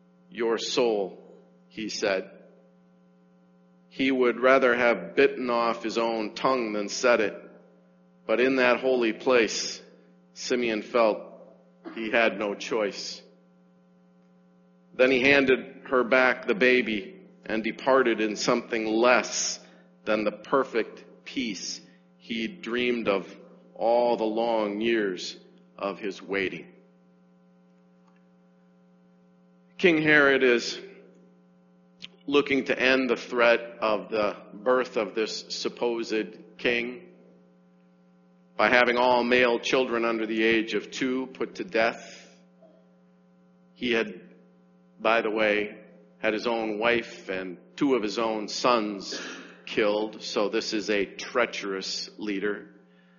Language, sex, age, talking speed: English, male, 40-59, 115 wpm